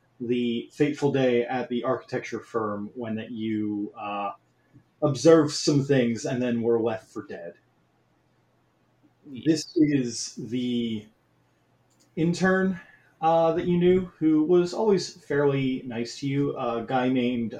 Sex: male